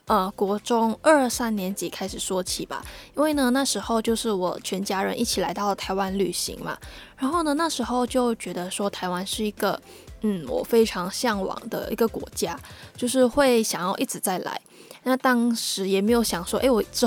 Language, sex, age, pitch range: Chinese, female, 10-29, 195-240 Hz